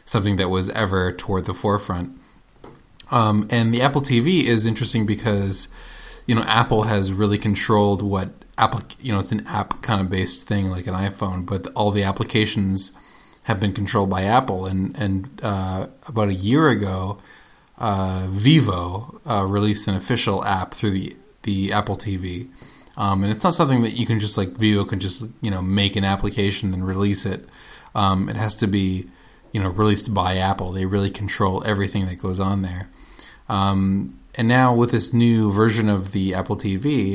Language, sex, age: English, male, 20-39